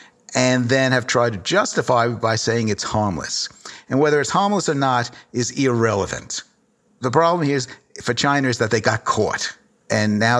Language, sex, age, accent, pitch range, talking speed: English, male, 50-69, American, 105-135 Hz, 180 wpm